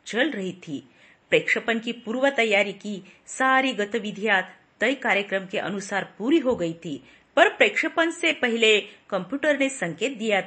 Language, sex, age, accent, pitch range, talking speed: Marathi, female, 40-59, native, 190-275 Hz, 150 wpm